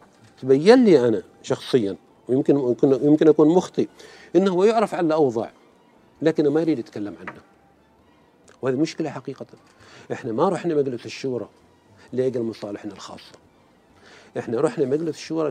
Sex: male